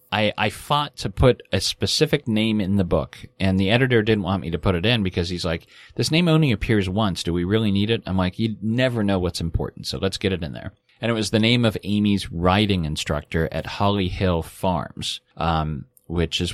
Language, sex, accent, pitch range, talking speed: English, male, American, 90-110 Hz, 230 wpm